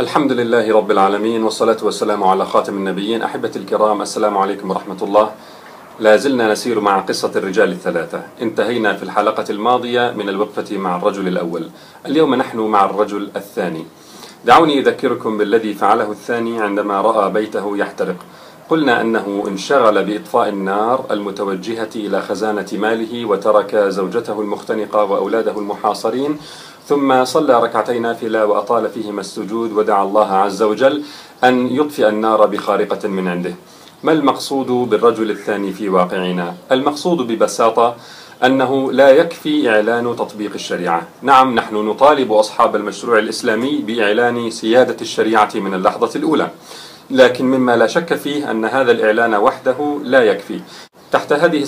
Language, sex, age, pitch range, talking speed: Arabic, male, 40-59, 105-130 Hz, 135 wpm